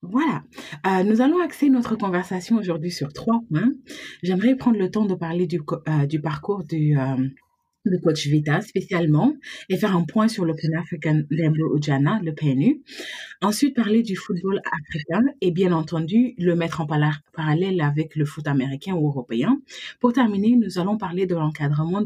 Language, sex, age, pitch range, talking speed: English, female, 30-49, 155-210 Hz, 175 wpm